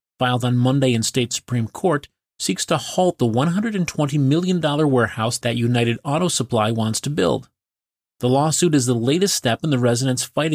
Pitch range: 115-150 Hz